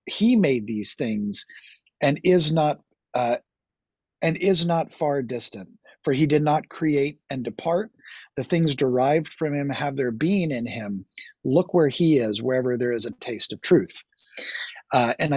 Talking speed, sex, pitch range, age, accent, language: 170 wpm, male, 125-165 Hz, 40-59, American, English